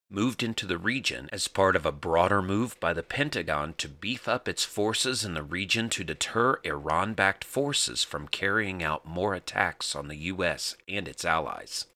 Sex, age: male, 40-59